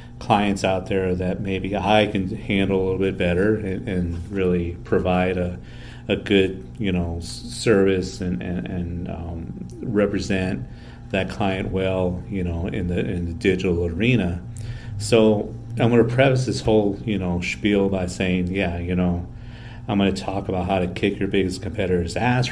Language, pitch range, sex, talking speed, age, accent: English, 90-115 Hz, male, 175 wpm, 40-59, American